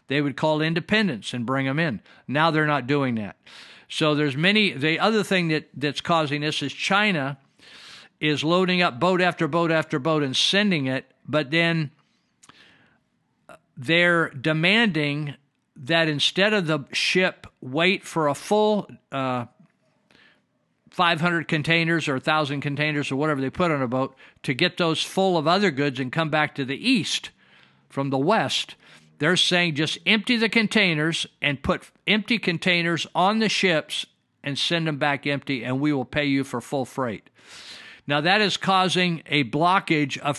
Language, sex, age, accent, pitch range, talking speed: English, male, 50-69, American, 145-180 Hz, 165 wpm